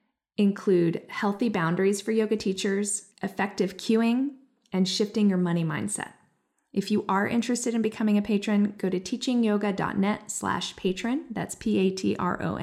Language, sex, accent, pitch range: English, female, American, 195-230 Hz